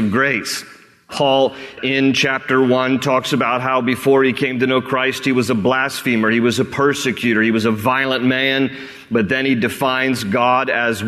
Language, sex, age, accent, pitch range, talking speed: English, male, 40-59, American, 130-150 Hz, 180 wpm